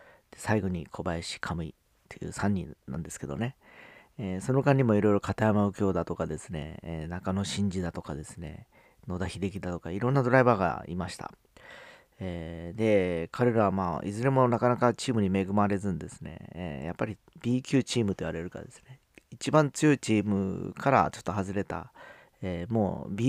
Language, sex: Japanese, male